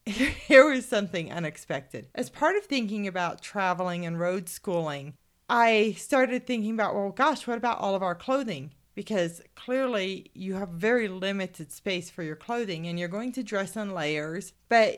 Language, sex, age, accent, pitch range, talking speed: English, female, 40-59, American, 175-225 Hz, 170 wpm